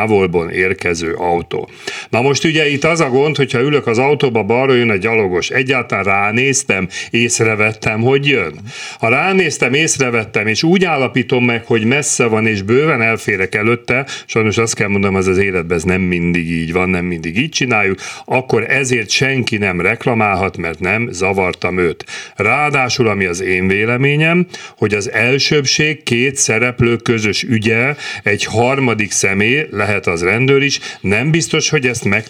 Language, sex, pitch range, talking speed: Hungarian, male, 110-145 Hz, 160 wpm